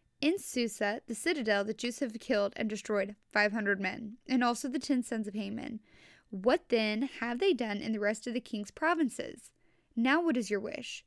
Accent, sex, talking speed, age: American, female, 200 wpm, 10-29